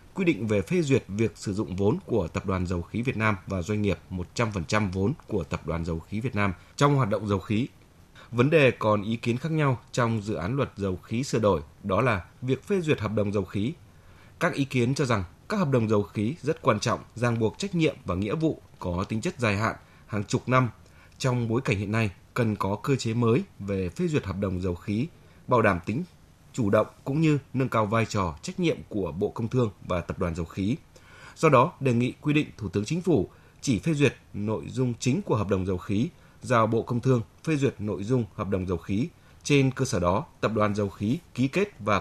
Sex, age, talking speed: male, 20-39, 240 wpm